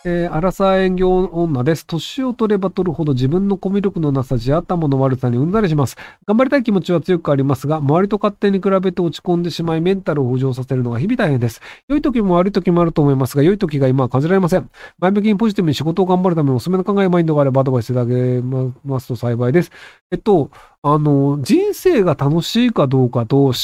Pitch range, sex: 135-210 Hz, male